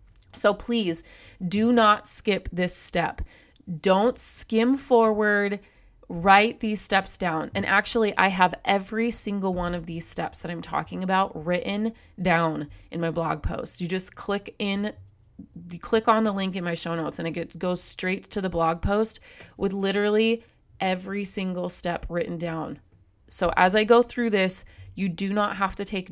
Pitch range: 165-205 Hz